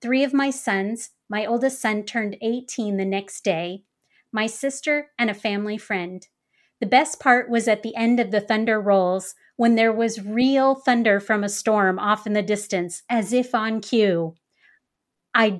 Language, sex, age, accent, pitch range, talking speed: English, female, 30-49, American, 200-235 Hz, 175 wpm